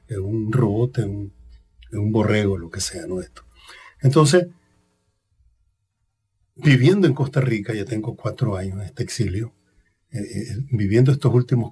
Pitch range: 100-125 Hz